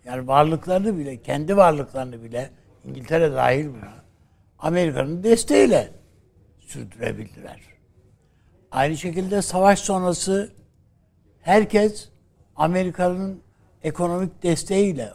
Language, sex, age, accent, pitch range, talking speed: Turkish, male, 60-79, native, 110-170 Hz, 80 wpm